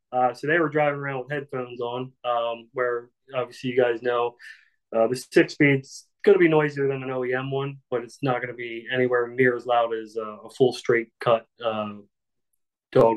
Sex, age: male, 30-49